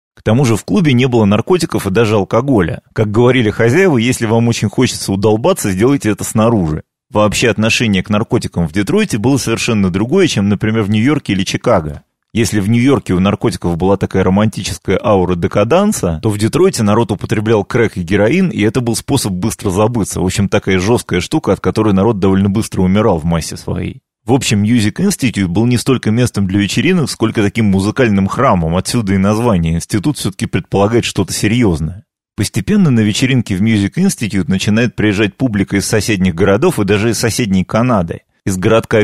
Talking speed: 180 wpm